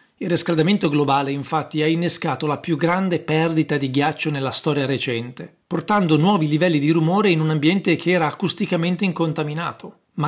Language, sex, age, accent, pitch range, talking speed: Italian, male, 40-59, native, 140-175 Hz, 165 wpm